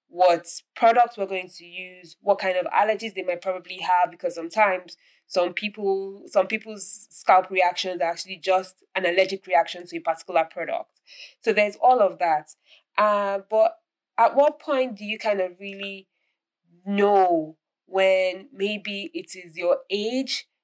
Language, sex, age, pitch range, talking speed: English, female, 20-39, 180-205 Hz, 155 wpm